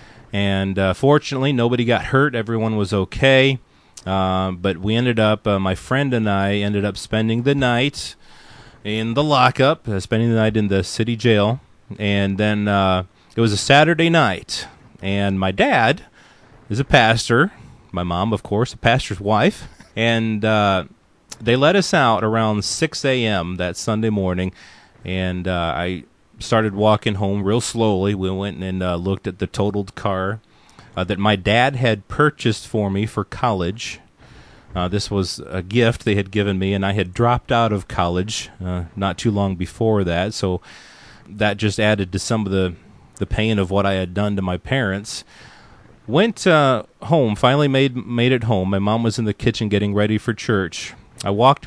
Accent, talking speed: American, 180 wpm